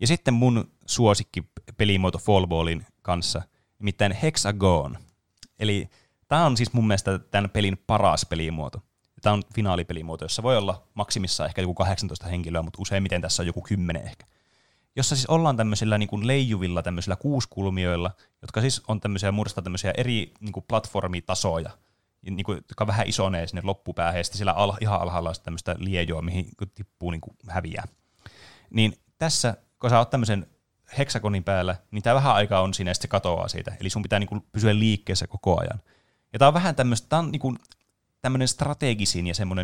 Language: Finnish